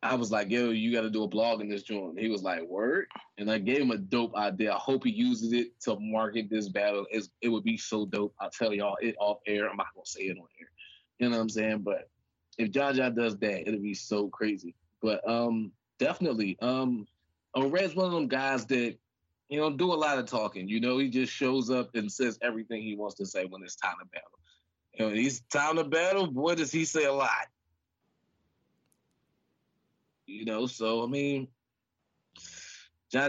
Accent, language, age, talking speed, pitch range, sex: American, English, 20-39, 215 wpm, 105-125 Hz, male